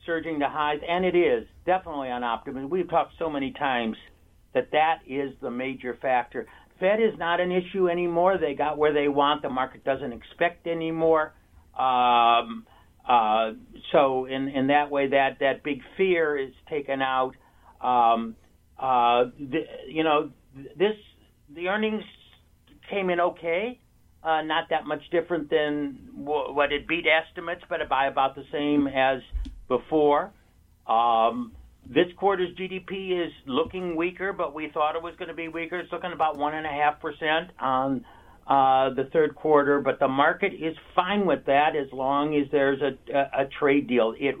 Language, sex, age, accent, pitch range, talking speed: English, male, 60-79, American, 130-165 Hz, 165 wpm